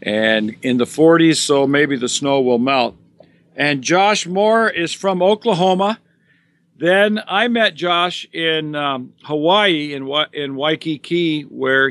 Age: 50-69